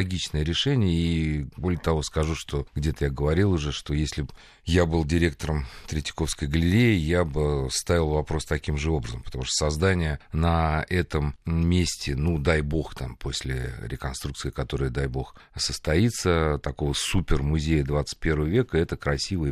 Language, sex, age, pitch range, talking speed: Russian, male, 40-59, 75-90 Hz, 150 wpm